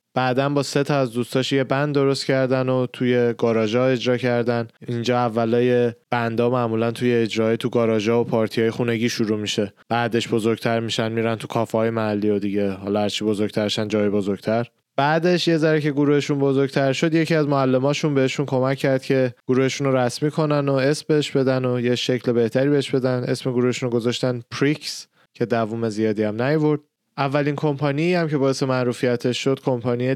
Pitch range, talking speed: 115-135 Hz, 175 wpm